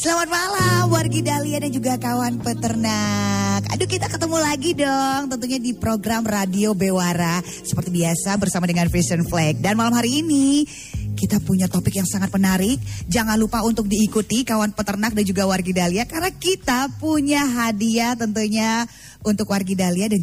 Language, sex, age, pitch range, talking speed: Indonesian, female, 20-39, 180-235 Hz, 155 wpm